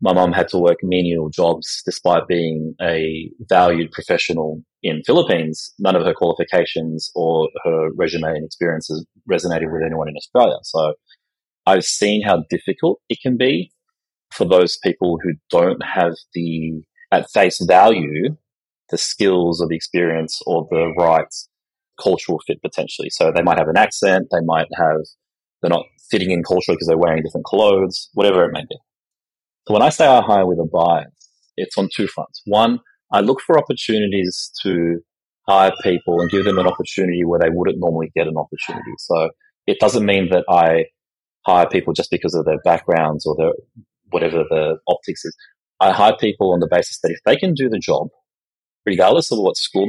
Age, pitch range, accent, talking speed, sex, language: 30-49, 80-130 Hz, Australian, 180 wpm, male, English